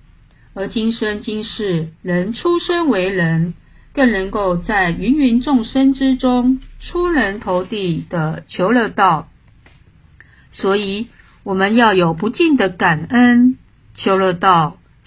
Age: 50-69